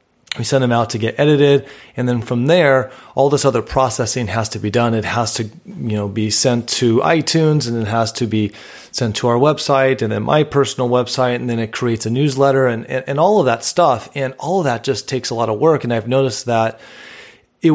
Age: 30-49